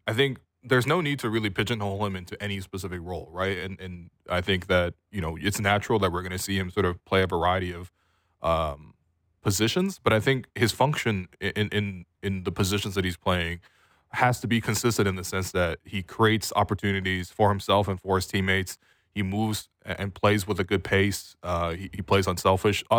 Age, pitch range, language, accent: 20-39, 95-110 Hz, English, American